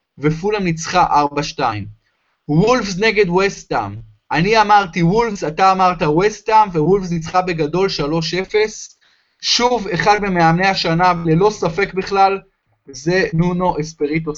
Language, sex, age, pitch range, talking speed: Hebrew, male, 20-39, 160-200 Hz, 110 wpm